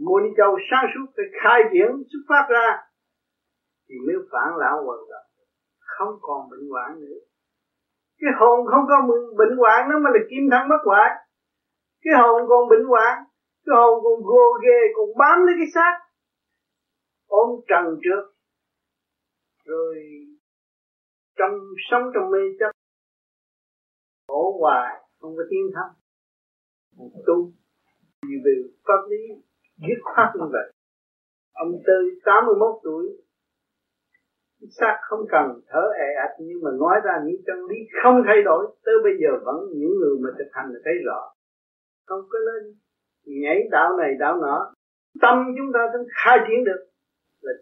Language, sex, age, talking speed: Vietnamese, male, 50-69, 155 wpm